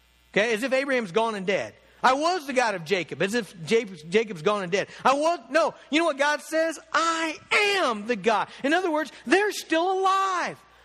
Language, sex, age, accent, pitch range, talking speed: English, male, 50-69, American, 225-320 Hz, 205 wpm